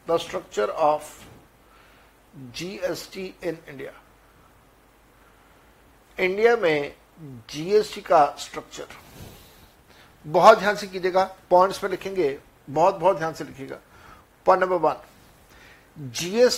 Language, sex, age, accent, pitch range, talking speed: Hindi, male, 60-79, native, 155-200 Hz, 110 wpm